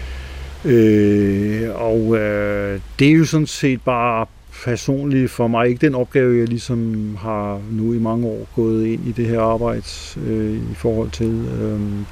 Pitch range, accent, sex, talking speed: 105-120 Hz, native, male, 165 wpm